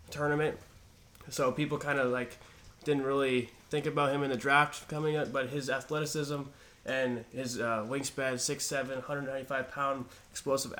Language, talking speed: English, 140 wpm